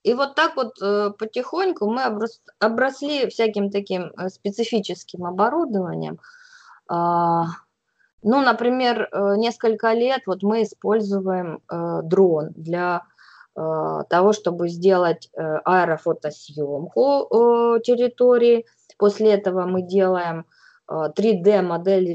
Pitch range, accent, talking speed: 170-220 Hz, native, 80 wpm